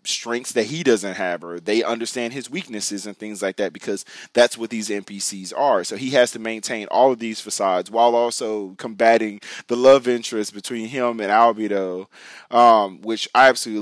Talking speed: 185 wpm